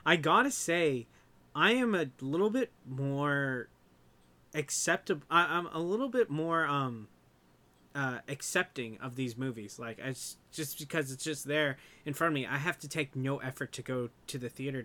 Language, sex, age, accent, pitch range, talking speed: English, male, 20-39, American, 130-170 Hz, 185 wpm